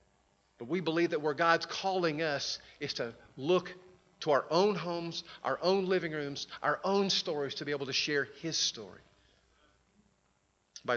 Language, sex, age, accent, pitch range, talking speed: English, male, 40-59, American, 130-175 Hz, 165 wpm